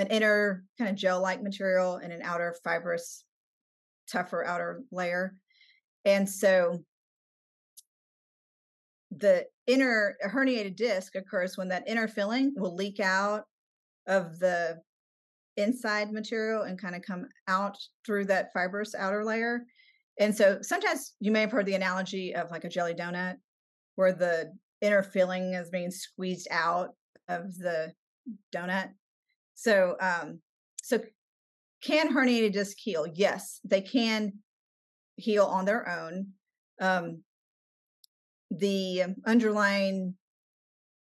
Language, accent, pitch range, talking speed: English, American, 180-220 Hz, 120 wpm